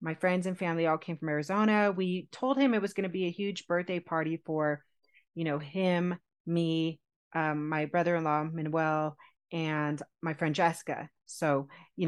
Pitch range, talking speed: 165-240 Hz, 170 wpm